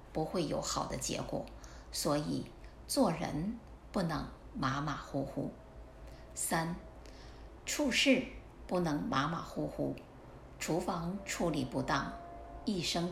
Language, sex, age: Chinese, female, 50-69